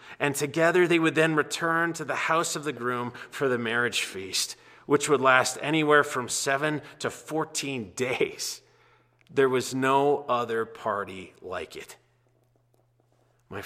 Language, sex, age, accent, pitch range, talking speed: English, male, 30-49, American, 130-195 Hz, 145 wpm